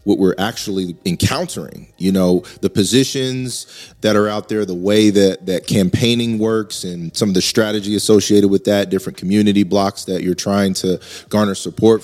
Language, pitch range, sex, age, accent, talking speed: English, 95-110 Hz, male, 30-49, American, 175 wpm